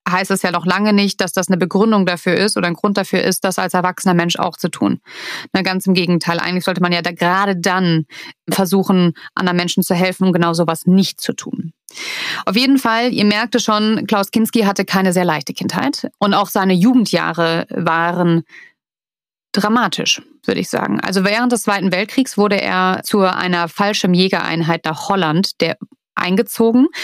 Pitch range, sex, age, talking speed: 180-215 Hz, female, 30-49, 185 wpm